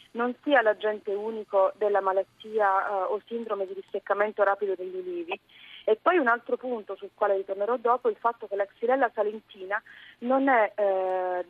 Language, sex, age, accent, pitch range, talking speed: Italian, female, 30-49, native, 185-235 Hz, 165 wpm